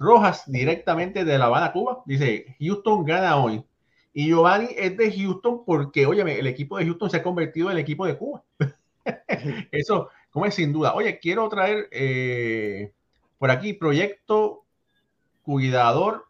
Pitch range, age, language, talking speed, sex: 120-175 Hz, 30-49, Spanish, 155 wpm, male